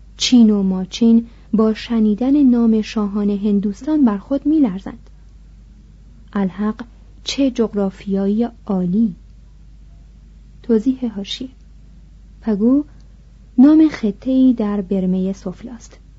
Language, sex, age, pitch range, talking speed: Persian, female, 30-49, 205-255 Hz, 85 wpm